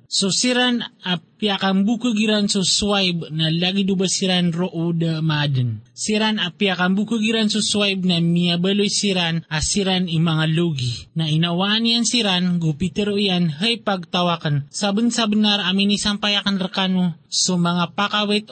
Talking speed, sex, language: 145 wpm, male, Filipino